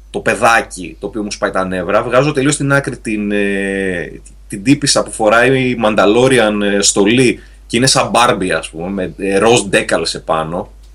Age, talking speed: 30-49, 165 wpm